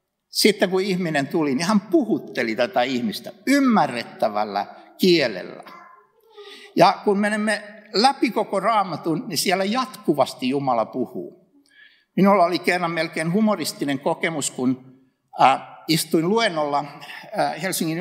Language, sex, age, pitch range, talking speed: Finnish, male, 60-79, 145-225 Hz, 105 wpm